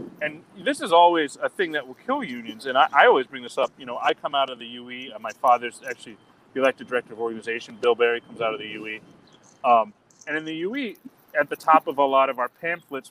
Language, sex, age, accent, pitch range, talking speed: English, male, 30-49, American, 125-190 Hz, 250 wpm